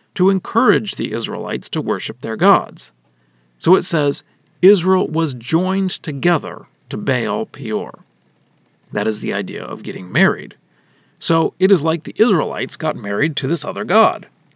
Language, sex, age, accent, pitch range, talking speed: English, male, 40-59, American, 145-195 Hz, 155 wpm